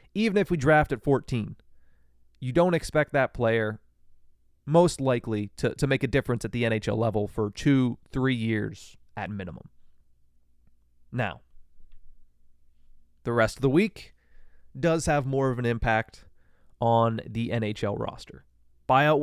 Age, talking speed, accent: 30-49, 140 wpm, American